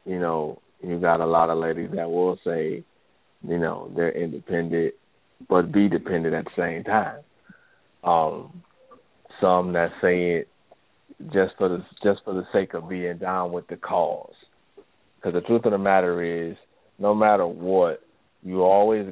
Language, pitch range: English, 90-105 Hz